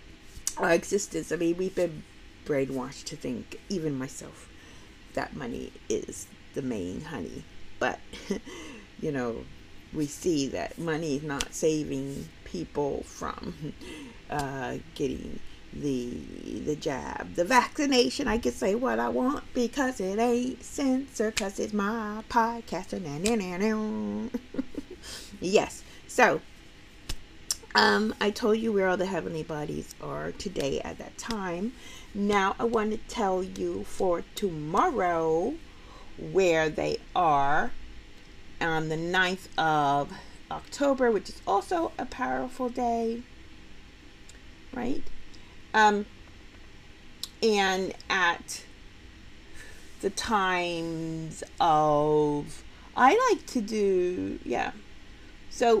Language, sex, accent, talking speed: English, female, American, 115 wpm